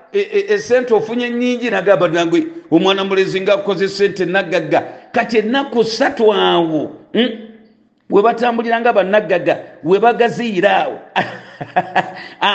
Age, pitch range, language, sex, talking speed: 50-69, 170-215 Hz, English, male, 125 wpm